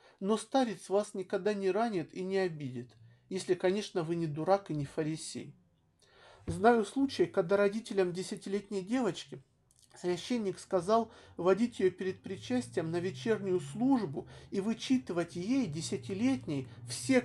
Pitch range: 170-215 Hz